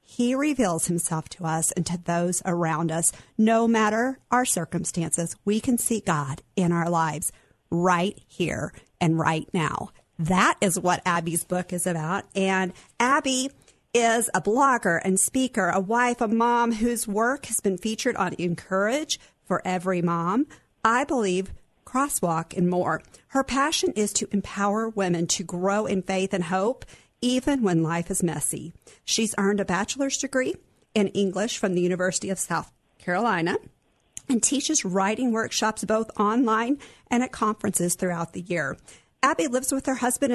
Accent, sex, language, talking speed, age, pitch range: American, female, English, 160 wpm, 50-69, 180-235 Hz